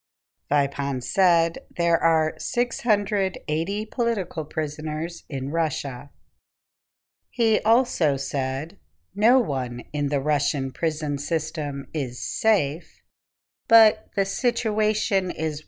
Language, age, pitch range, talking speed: English, 50-69, 145-200 Hz, 95 wpm